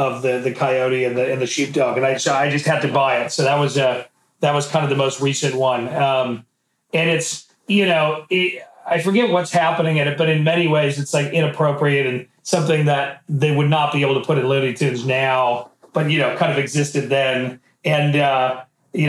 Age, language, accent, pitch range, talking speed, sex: 40-59, English, American, 140-165 Hz, 235 wpm, male